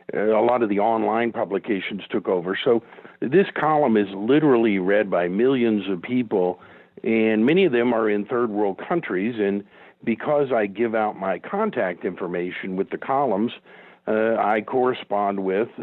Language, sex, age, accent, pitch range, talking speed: English, male, 50-69, American, 100-120 Hz, 160 wpm